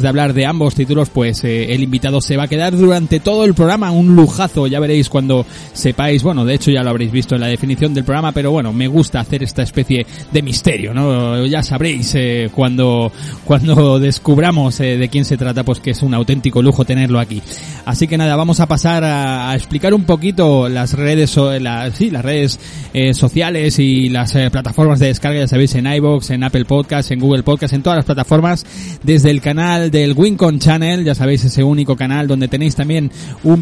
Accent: Spanish